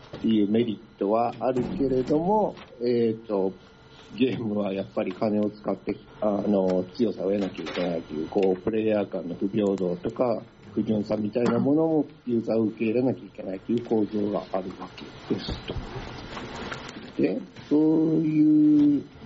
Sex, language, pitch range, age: male, Japanese, 105-130 Hz, 50-69